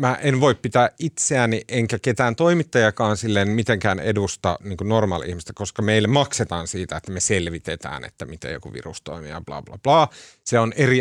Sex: male